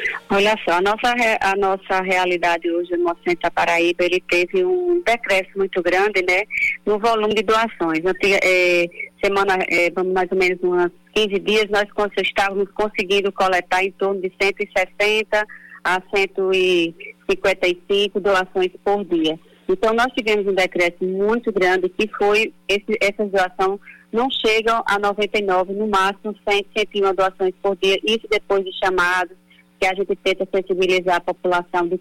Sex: female